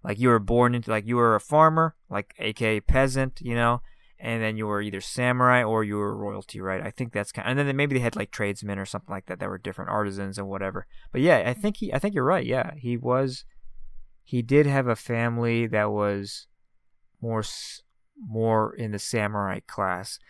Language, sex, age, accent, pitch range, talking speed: English, male, 20-39, American, 105-130 Hz, 215 wpm